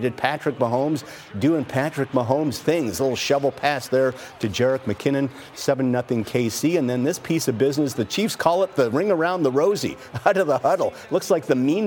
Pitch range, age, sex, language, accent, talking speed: 110-140 Hz, 50-69, male, English, American, 195 wpm